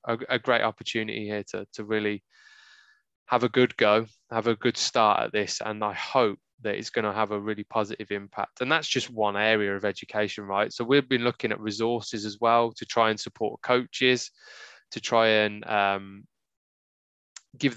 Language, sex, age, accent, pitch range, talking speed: English, male, 20-39, British, 110-125 Hz, 185 wpm